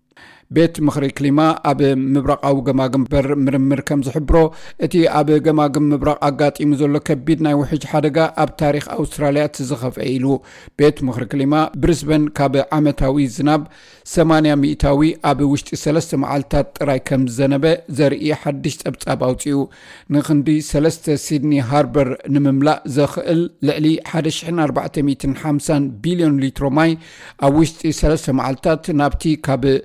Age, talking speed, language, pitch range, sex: 50-69, 105 wpm, Amharic, 135-155 Hz, male